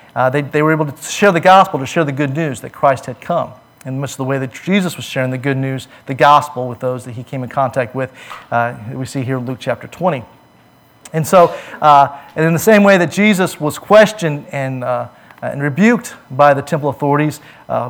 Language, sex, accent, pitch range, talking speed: English, male, American, 130-170 Hz, 230 wpm